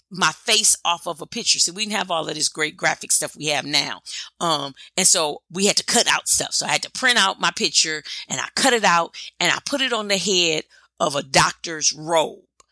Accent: American